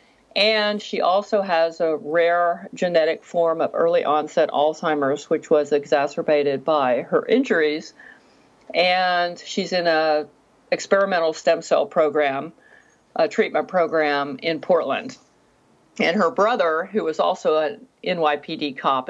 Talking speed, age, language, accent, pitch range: 125 wpm, 50-69, English, American, 155-205 Hz